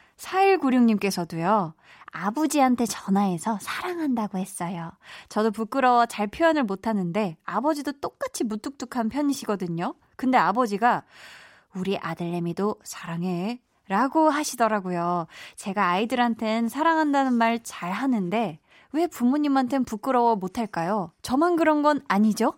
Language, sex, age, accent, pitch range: Korean, female, 20-39, native, 195-270 Hz